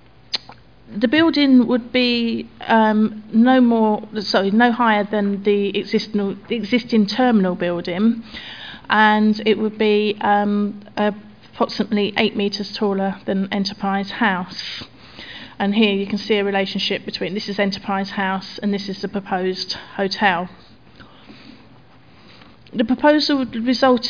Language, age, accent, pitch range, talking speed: English, 40-59, British, 200-230 Hz, 125 wpm